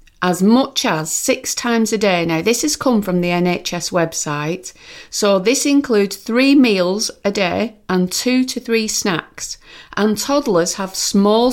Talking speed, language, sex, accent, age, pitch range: 160 wpm, English, female, British, 40-59, 175-235 Hz